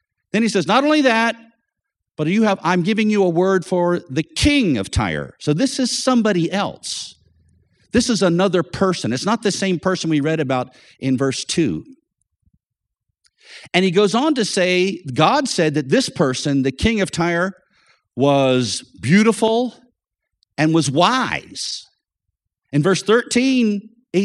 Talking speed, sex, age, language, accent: 150 wpm, male, 50-69, English, American